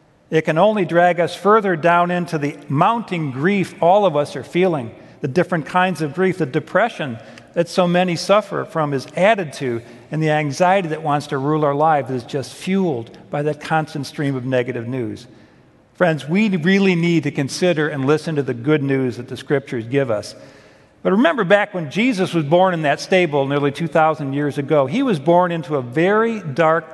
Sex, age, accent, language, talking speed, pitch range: male, 50-69, American, English, 195 wpm, 150-195 Hz